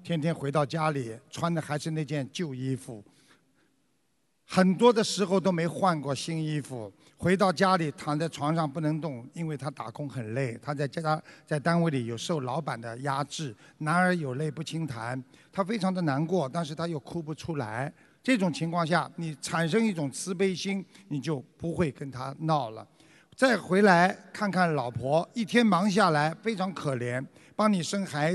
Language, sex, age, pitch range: Chinese, male, 50-69, 150-210 Hz